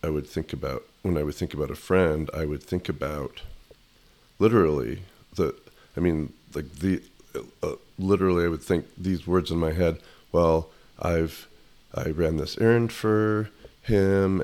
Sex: male